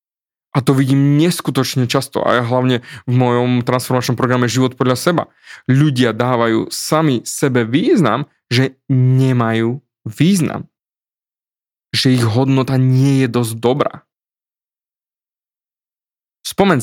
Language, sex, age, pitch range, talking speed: Slovak, male, 20-39, 120-140 Hz, 105 wpm